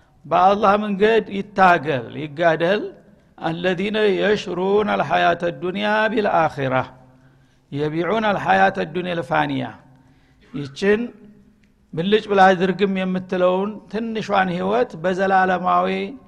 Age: 60-79